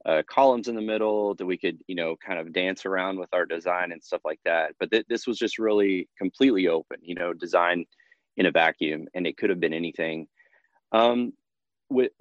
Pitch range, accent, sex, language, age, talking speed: 90-110 Hz, American, male, English, 20-39, 210 wpm